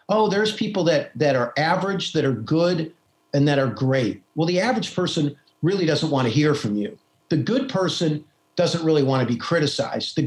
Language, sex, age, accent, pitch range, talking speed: English, male, 50-69, American, 135-170 Hz, 205 wpm